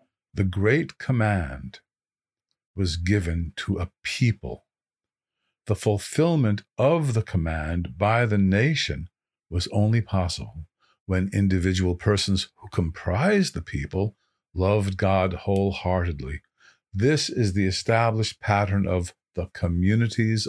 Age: 50-69